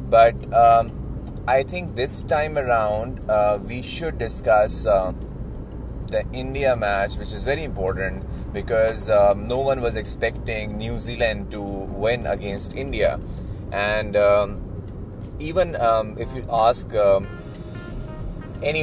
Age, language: 20-39, English